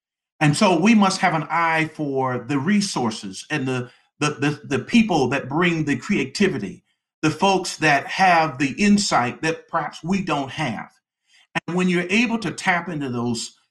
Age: 50-69